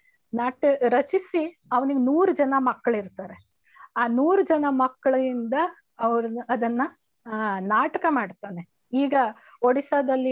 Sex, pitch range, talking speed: female, 225-285 Hz, 100 wpm